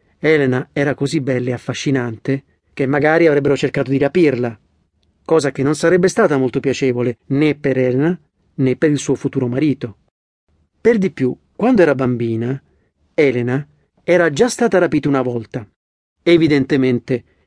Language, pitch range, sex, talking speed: Italian, 125-150 Hz, male, 145 wpm